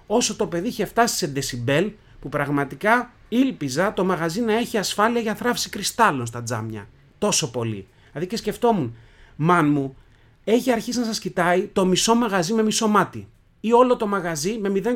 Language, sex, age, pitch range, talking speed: Greek, male, 30-49, 135-220 Hz, 175 wpm